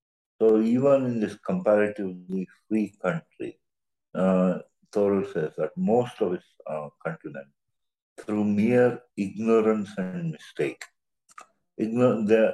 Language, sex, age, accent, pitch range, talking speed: English, male, 50-69, Indian, 95-120 Hz, 105 wpm